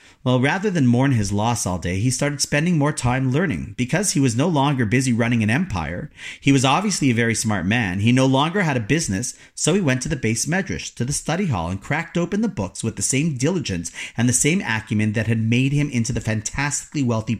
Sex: male